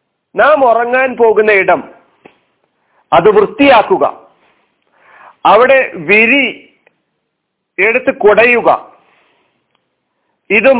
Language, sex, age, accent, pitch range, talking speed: Malayalam, male, 50-69, native, 185-275 Hz, 60 wpm